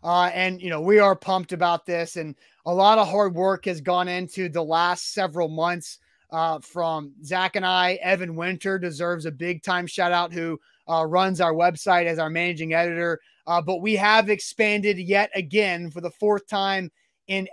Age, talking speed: 30-49, 190 wpm